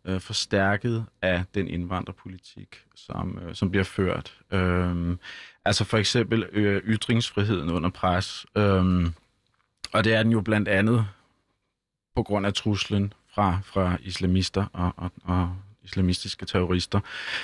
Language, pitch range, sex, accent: Danish, 90-105 Hz, male, native